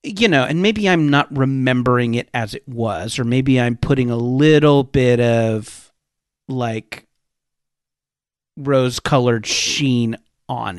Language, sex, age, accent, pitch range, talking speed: English, male, 40-59, American, 115-145 Hz, 130 wpm